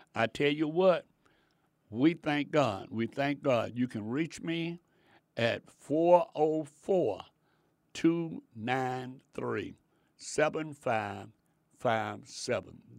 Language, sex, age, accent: English, male, 60-79, American